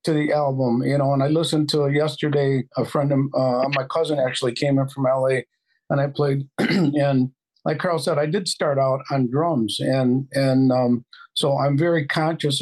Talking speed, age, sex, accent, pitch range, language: 190 wpm, 50-69, male, American, 130-155 Hz, English